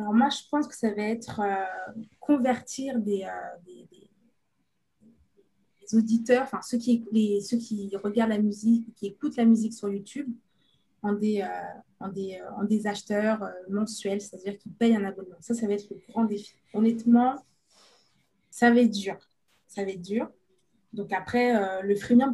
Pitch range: 205-245 Hz